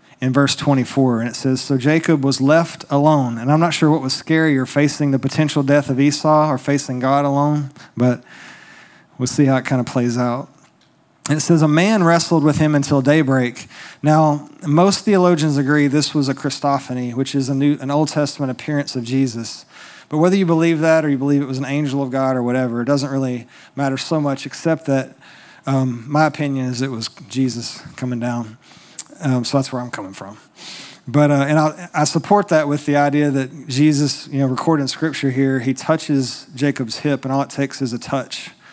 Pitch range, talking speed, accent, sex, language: 130-155 Hz, 210 wpm, American, male, English